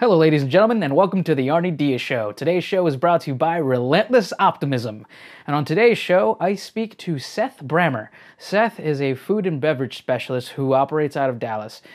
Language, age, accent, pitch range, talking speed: English, 20-39, American, 125-165 Hz, 205 wpm